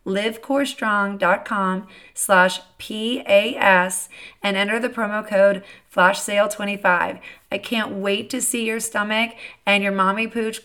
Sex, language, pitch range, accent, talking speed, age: female, English, 185-235 Hz, American, 120 wpm, 30-49